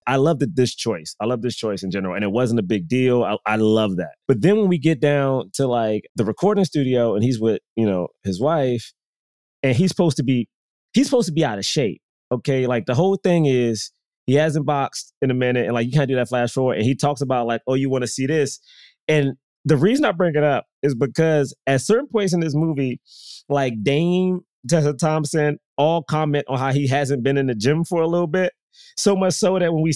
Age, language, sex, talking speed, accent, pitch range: 20-39, English, male, 240 wpm, American, 125-175 Hz